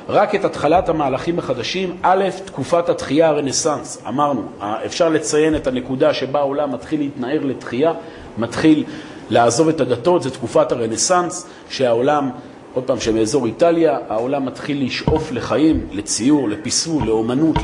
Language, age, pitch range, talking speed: Hebrew, 40-59, 120-160 Hz, 130 wpm